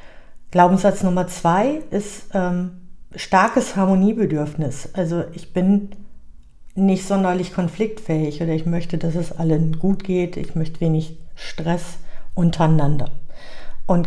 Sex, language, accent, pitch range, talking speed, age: female, German, German, 165-195 Hz, 115 wpm, 50-69